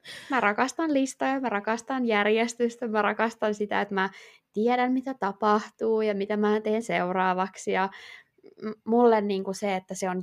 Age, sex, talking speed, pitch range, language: 20-39, female, 160 wpm, 195-240 Hz, Finnish